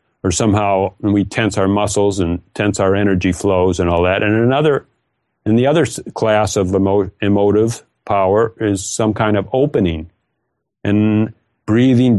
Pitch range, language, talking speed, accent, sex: 95-115 Hz, English, 155 wpm, American, male